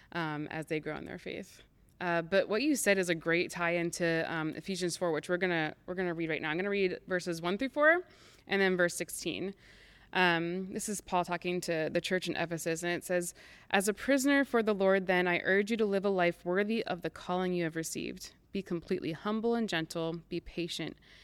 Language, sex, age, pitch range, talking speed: English, female, 20-39, 165-195 Hz, 225 wpm